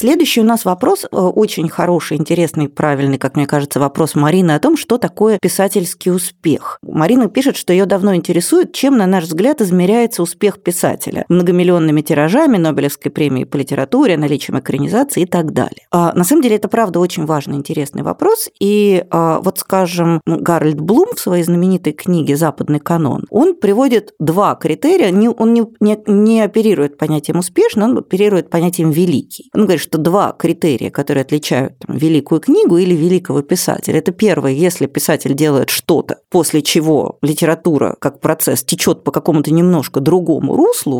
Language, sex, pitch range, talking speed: Russian, female, 155-210 Hz, 155 wpm